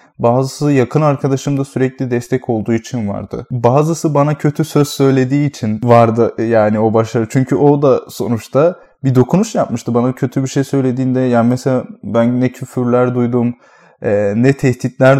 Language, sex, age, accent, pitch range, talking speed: Turkish, male, 20-39, native, 120-155 Hz, 150 wpm